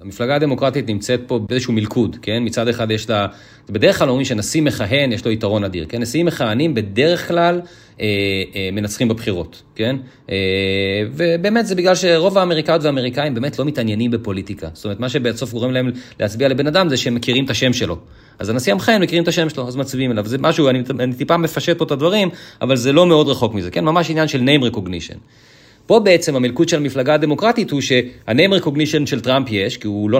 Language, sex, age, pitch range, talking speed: Hebrew, male, 30-49, 105-150 Hz, 205 wpm